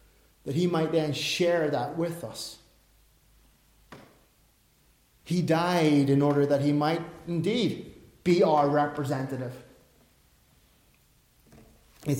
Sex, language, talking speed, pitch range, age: male, English, 100 wpm, 145-190 Hz, 30-49